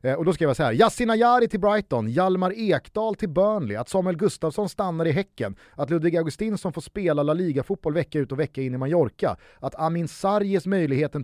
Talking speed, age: 210 wpm, 30-49